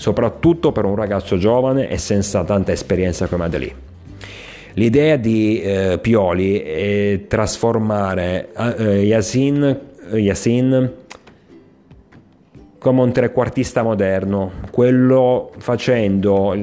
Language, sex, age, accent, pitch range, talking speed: Italian, male, 30-49, native, 95-110 Hz, 95 wpm